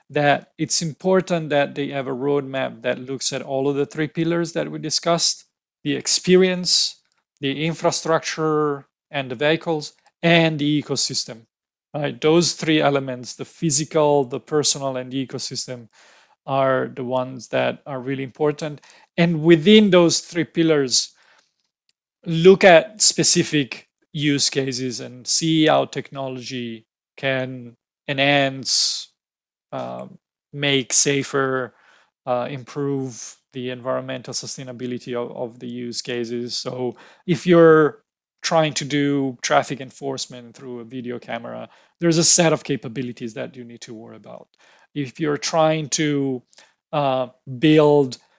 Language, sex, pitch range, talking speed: English, male, 125-155 Hz, 130 wpm